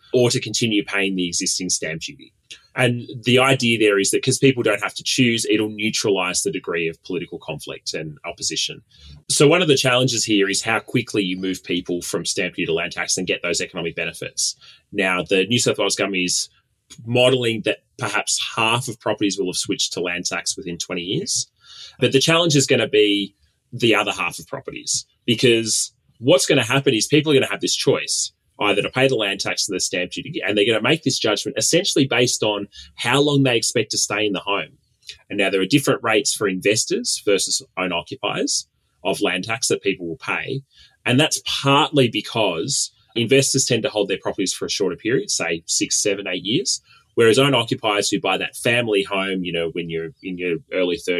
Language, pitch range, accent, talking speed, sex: English, 95-130 Hz, Australian, 210 wpm, male